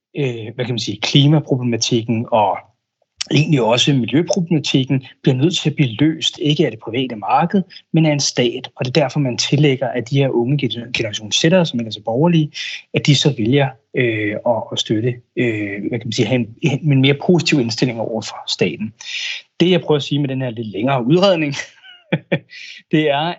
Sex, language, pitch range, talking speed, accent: male, Danish, 125-155 Hz, 190 wpm, native